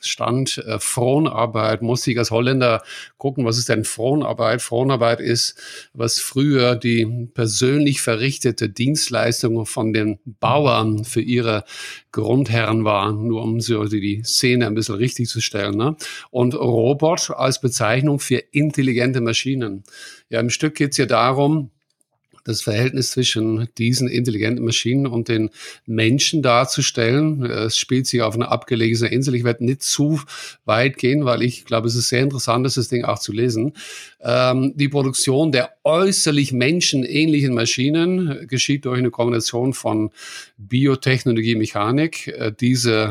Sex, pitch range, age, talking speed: male, 115-135 Hz, 50-69, 145 wpm